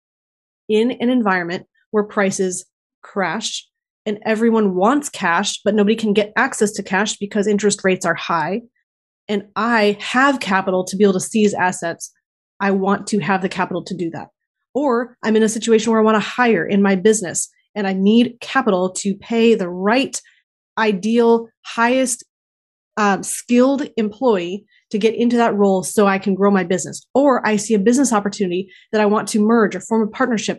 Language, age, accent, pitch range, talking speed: English, 30-49, American, 195-230 Hz, 180 wpm